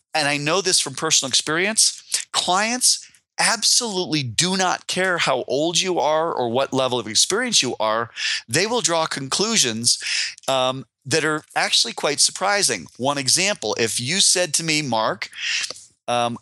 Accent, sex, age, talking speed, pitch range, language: American, male, 40-59, 155 wpm, 125-170 Hz, English